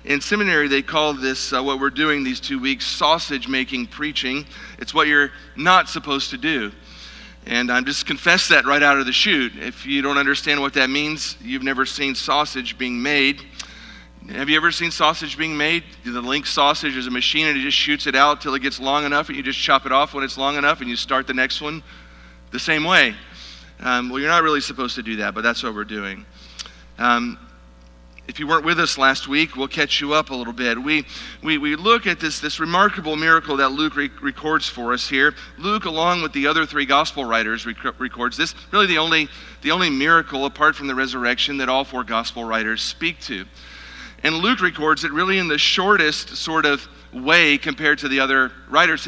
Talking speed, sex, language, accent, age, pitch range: 215 wpm, male, English, American, 40-59, 130-155 Hz